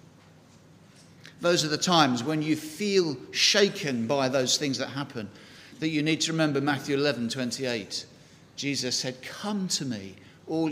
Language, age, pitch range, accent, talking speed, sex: English, 50-69, 130-165 Hz, British, 155 wpm, male